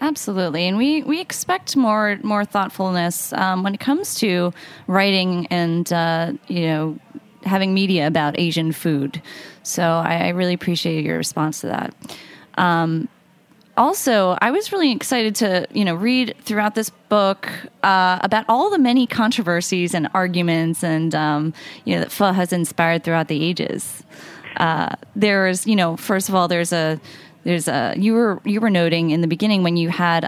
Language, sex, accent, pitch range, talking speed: English, female, American, 165-205 Hz, 170 wpm